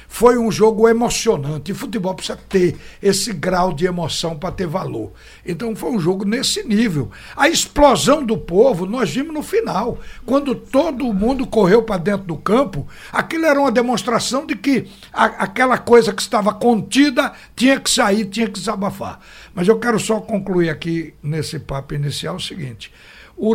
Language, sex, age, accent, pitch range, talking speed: Portuguese, male, 60-79, Brazilian, 170-225 Hz, 170 wpm